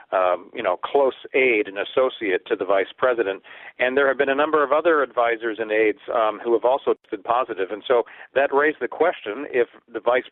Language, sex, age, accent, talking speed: English, male, 50-69, American, 215 wpm